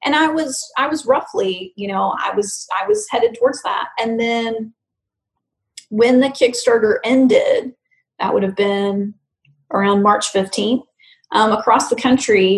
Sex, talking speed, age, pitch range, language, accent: female, 155 wpm, 30-49, 210-255 Hz, English, American